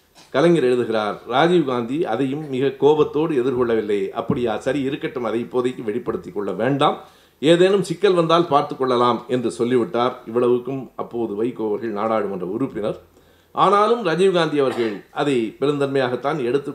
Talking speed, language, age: 120 wpm, Tamil, 50-69